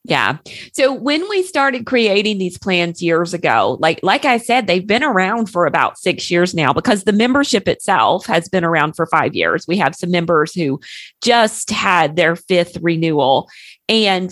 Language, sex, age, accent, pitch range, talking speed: English, female, 40-59, American, 175-235 Hz, 180 wpm